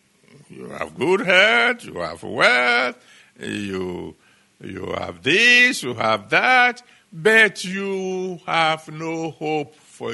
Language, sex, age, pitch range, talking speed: English, male, 60-79, 105-170 Hz, 120 wpm